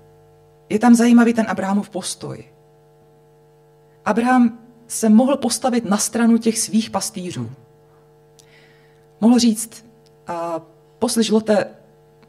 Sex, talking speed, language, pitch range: female, 90 wpm, Czech, 150-210 Hz